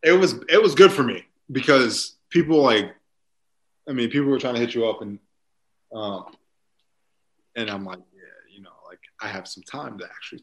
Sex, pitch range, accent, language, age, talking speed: male, 95-130 Hz, American, English, 20-39, 195 wpm